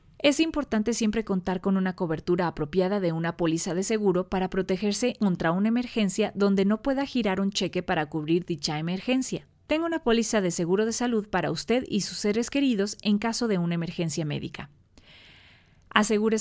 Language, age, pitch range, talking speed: Spanish, 30-49, 180-230 Hz, 175 wpm